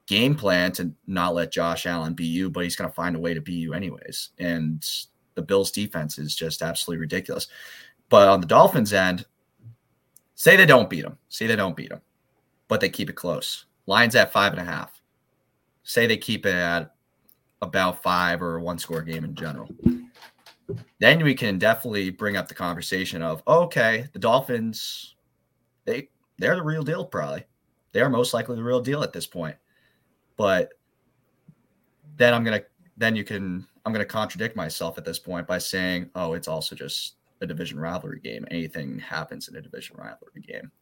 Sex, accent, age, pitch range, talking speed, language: male, American, 30-49, 85-115 Hz, 185 wpm, English